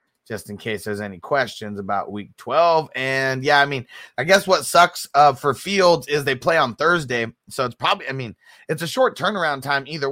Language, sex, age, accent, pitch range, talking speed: English, male, 30-49, American, 120-165 Hz, 215 wpm